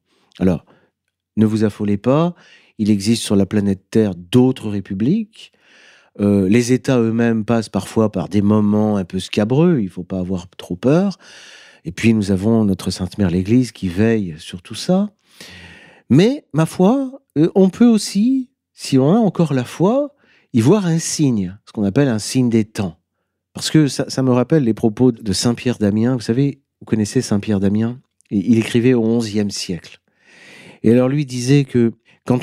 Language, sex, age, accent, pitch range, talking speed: French, male, 40-59, French, 105-130 Hz, 180 wpm